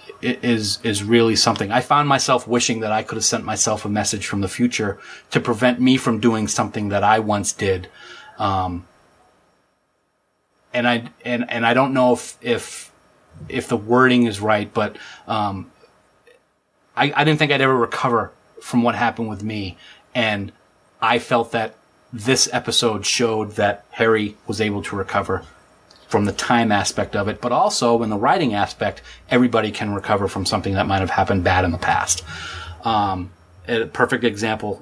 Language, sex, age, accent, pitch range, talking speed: English, male, 30-49, American, 100-120 Hz, 170 wpm